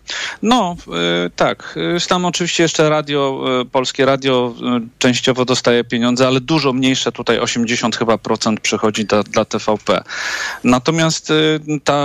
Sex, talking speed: male, 125 wpm